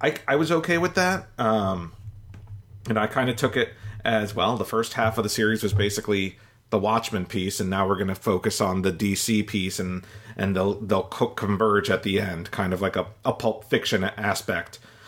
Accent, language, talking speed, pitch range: American, English, 210 wpm, 100-115 Hz